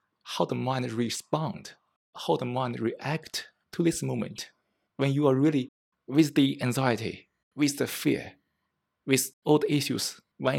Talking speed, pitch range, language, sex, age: 145 wpm, 120-150 Hz, English, male, 20-39